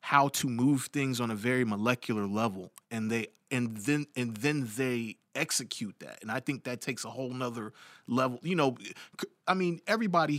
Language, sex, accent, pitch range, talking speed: English, male, American, 120-145 Hz, 185 wpm